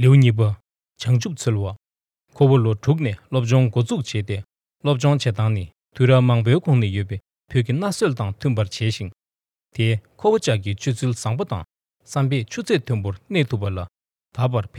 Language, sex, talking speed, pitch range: English, male, 55 wpm, 105-140 Hz